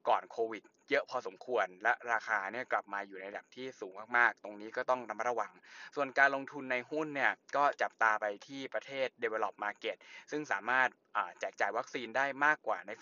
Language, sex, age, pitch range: Thai, male, 20-39, 110-135 Hz